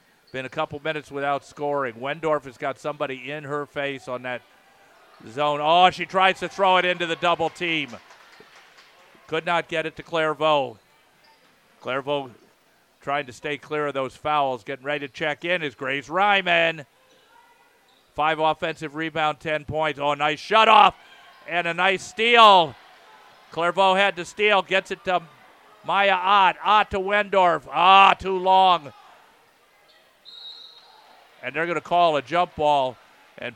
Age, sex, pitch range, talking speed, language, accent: 50-69, male, 135-165 Hz, 150 wpm, English, American